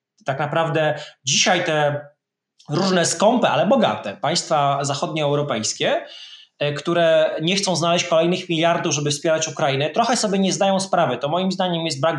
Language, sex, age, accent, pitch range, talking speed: Polish, male, 20-39, native, 140-180 Hz, 145 wpm